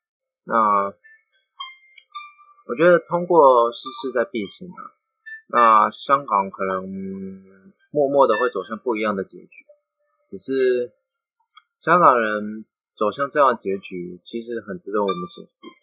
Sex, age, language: male, 20-39, Chinese